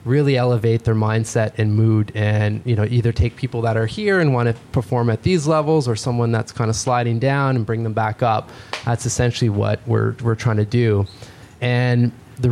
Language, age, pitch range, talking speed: English, 20-39, 110-125 Hz, 210 wpm